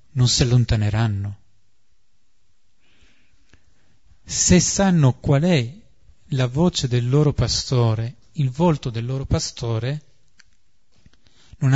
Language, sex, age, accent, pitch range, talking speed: Italian, male, 40-59, native, 115-145 Hz, 90 wpm